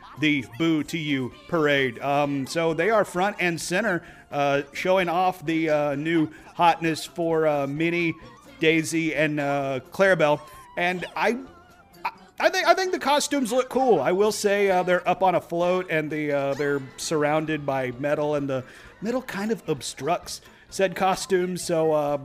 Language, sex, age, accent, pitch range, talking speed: English, male, 40-59, American, 150-190 Hz, 165 wpm